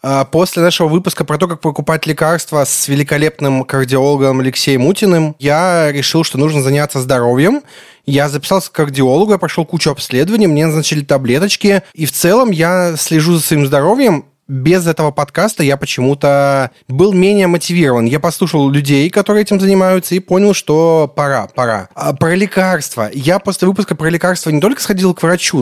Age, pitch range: 20-39, 140-185 Hz